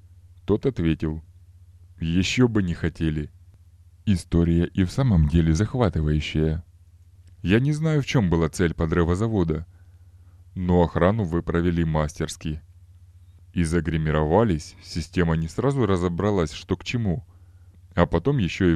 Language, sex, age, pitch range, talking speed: Russian, male, 20-39, 80-95 Hz, 125 wpm